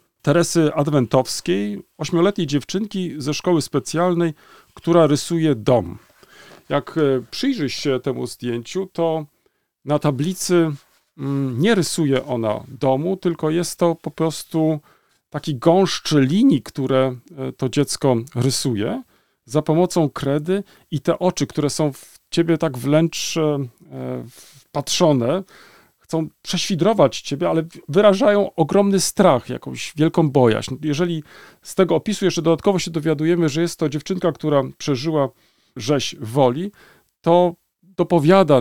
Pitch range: 135-175 Hz